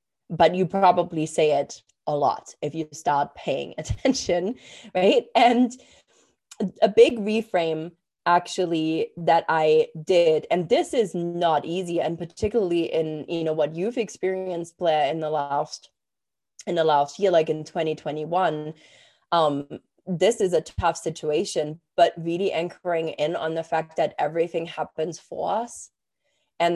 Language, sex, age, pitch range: English, female, 20-39, 165-195 Hz